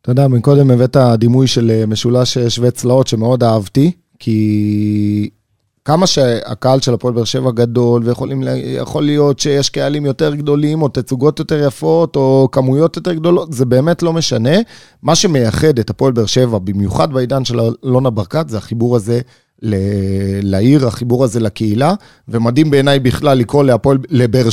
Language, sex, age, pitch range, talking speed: Hebrew, male, 30-49, 115-150 Hz, 150 wpm